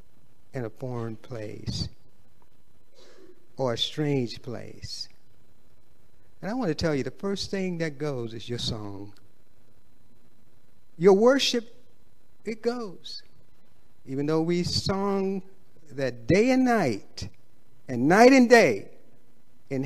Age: 50-69